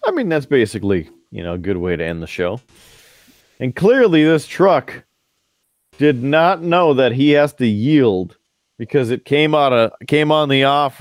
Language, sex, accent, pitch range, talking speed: English, male, American, 120-155 Hz, 185 wpm